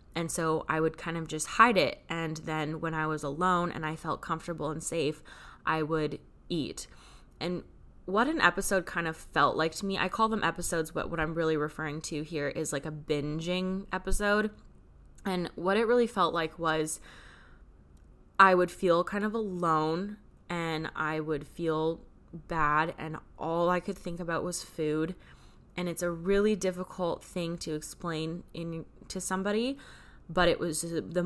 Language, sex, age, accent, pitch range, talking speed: English, female, 10-29, American, 155-180 Hz, 175 wpm